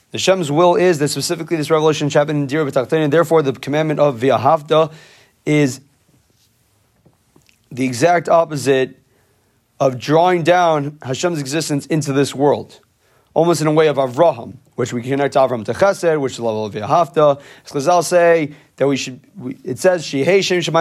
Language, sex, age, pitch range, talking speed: English, male, 30-49, 130-165 Hz, 145 wpm